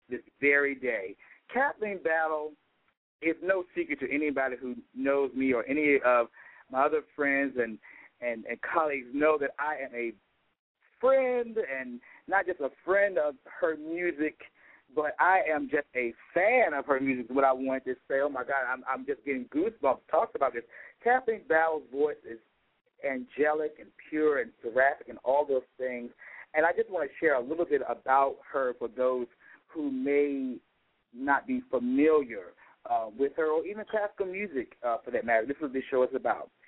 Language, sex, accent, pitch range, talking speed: English, male, American, 130-205 Hz, 180 wpm